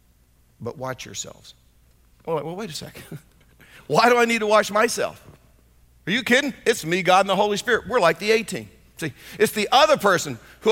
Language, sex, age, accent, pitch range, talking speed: English, male, 50-69, American, 155-215 Hz, 190 wpm